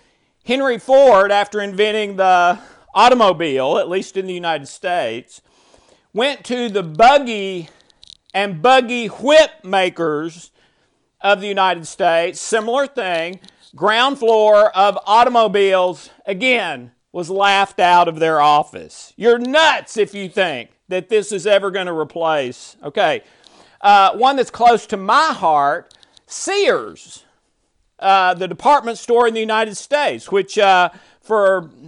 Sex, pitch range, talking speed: male, 180-235 Hz, 130 wpm